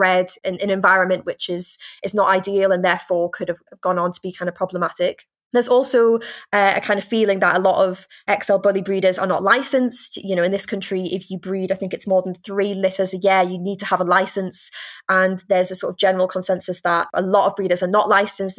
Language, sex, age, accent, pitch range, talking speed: English, female, 20-39, British, 180-215 Hz, 240 wpm